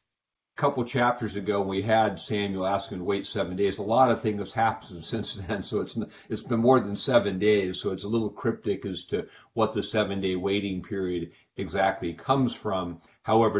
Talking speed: 205 wpm